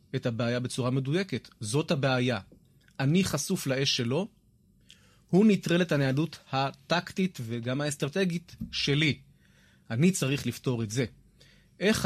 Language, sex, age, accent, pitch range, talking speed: Hebrew, male, 30-49, native, 125-175 Hz, 120 wpm